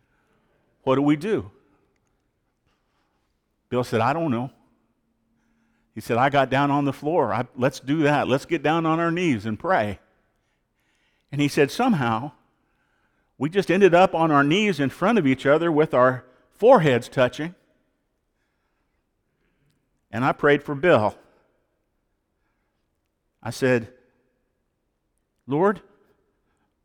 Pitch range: 125-155 Hz